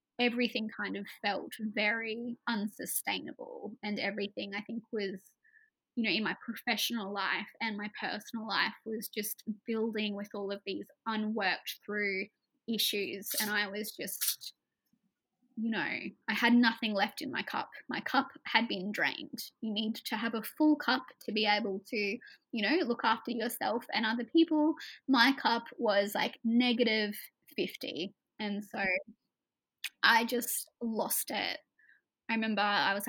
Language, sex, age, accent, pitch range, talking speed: English, female, 20-39, Australian, 210-250 Hz, 150 wpm